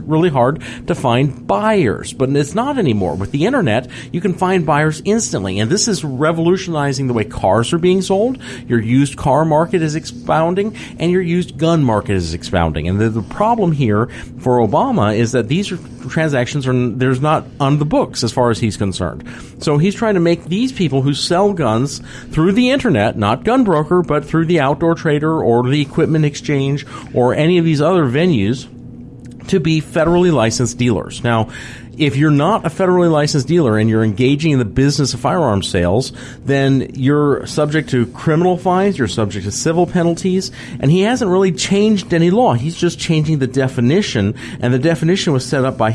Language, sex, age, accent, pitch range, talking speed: English, male, 40-59, American, 120-170 Hz, 190 wpm